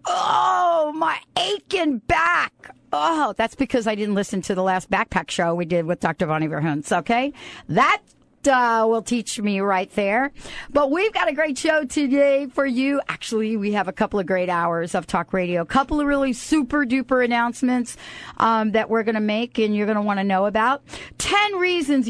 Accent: American